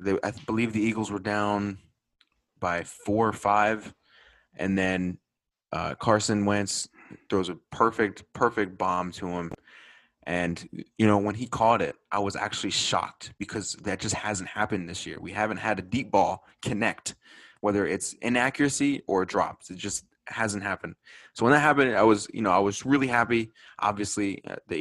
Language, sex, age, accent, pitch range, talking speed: English, male, 20-39, American, 95-110 Hz, 175 wpm